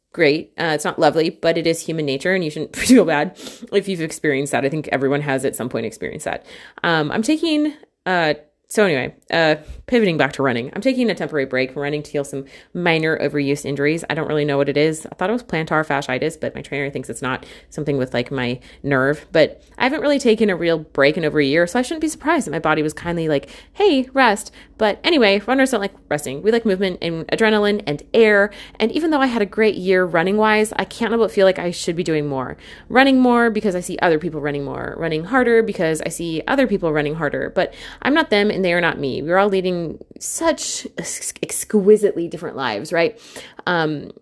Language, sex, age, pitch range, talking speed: English, female, 30-49, 160-215 Hz, 230 wpm